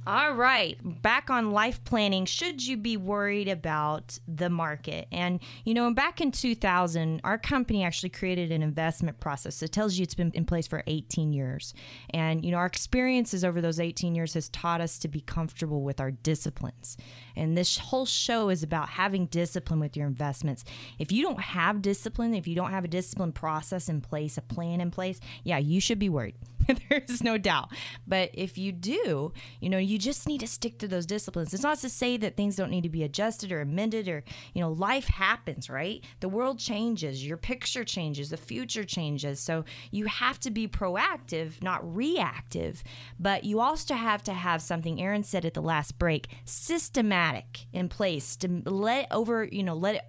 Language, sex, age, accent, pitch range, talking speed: English, female, 20-39, American, 160-215 Hz, 195 wpm